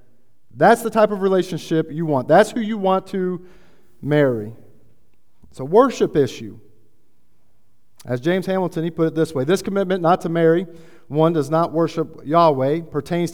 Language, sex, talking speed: English, male, 160 wpm